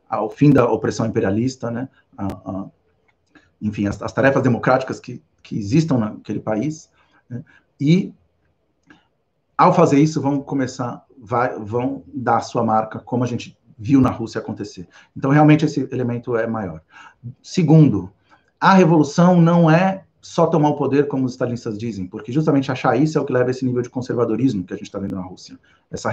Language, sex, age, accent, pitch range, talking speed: Portuguese, male, 50-69, Brazilian, 115-150 Hz, 180 wpm